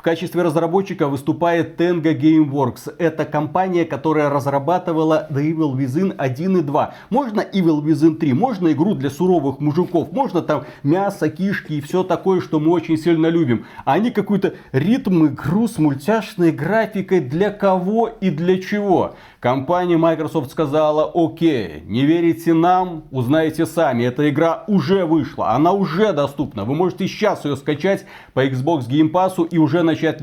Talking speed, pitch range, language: 155 wpm, 135-170 Hz, Russian